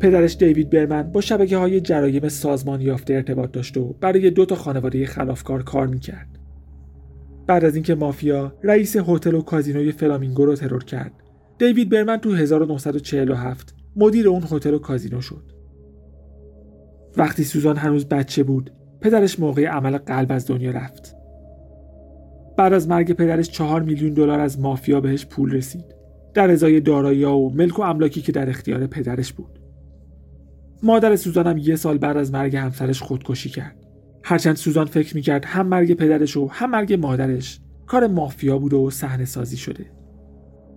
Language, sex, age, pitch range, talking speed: Persian, male, 40-59, 125-160 Hz, 155 wpm